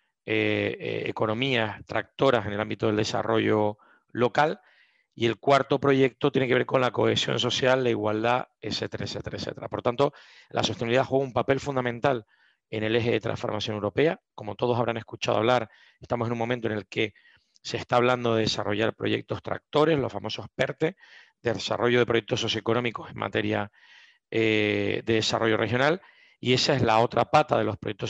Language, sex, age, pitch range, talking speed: Spanish, male, 40-59, 110-125 Hz, 175 wpm